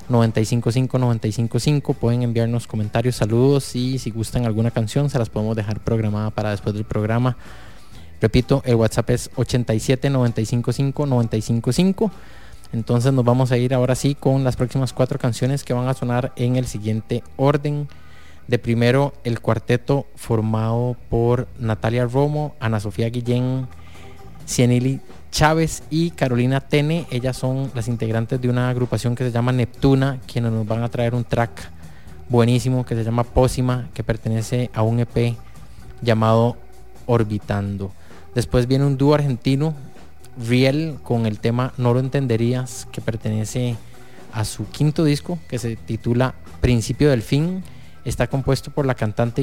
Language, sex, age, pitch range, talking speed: English, male, 20-39, 115-130 Hz, 150 wpm